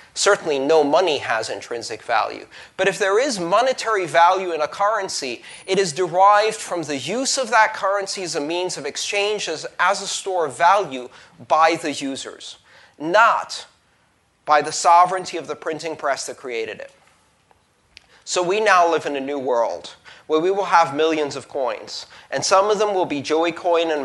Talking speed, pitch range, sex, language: 180 wpm, 150-205 Hz, male, English